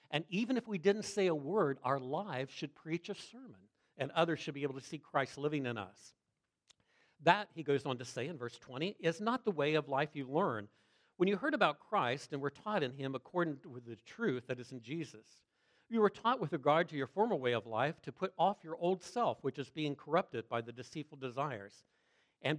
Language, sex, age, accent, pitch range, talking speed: English, male, 60-79, American, 130-180 Hz, 230 wpm